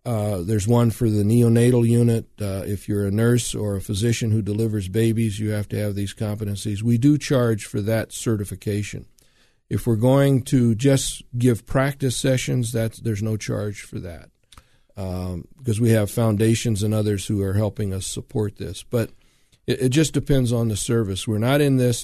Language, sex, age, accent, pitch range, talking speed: English, male, 40-59, American, 105-125 Hz, 185 wpm